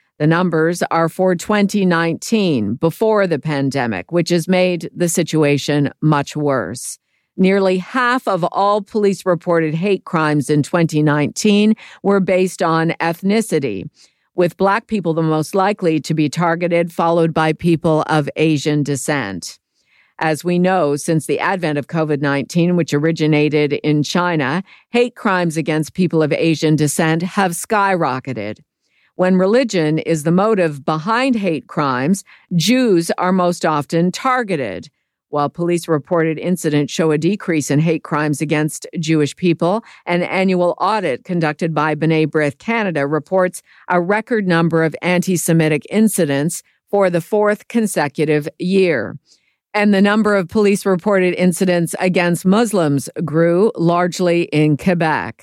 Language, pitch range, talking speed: English, 155-185 Hz, 130 wpm